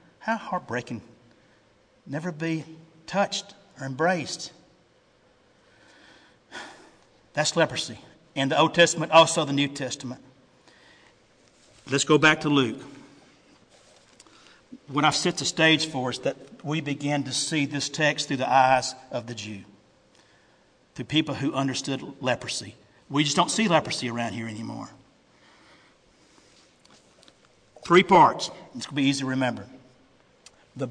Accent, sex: American, male